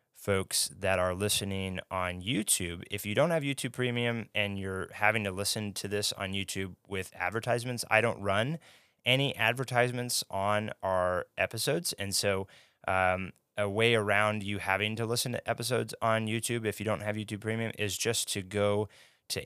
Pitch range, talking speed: 95-110 Hz, 175 wpm